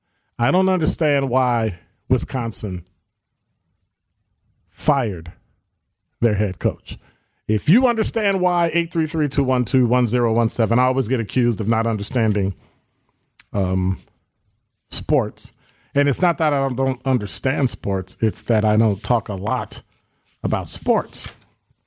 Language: English